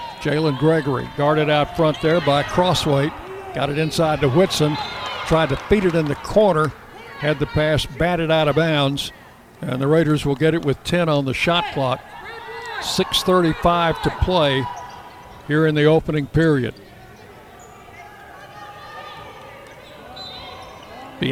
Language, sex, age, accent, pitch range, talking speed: English, male, 60-79, American, 145-170 Hz, 135 wpm